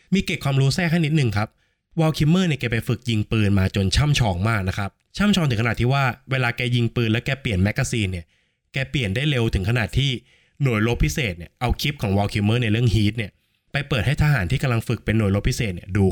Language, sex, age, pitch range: Thai, male, 20-39, 100-135 Hz